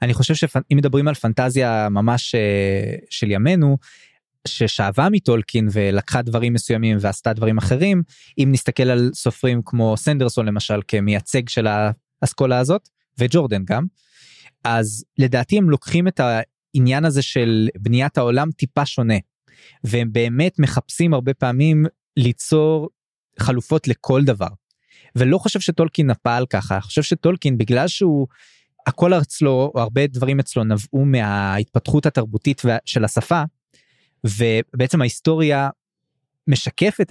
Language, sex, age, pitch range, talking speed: Hebrew, male, 20-39, 115-150 Hz, 120 wpm